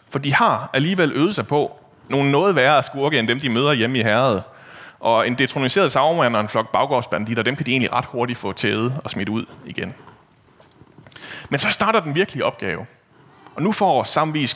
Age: 30-49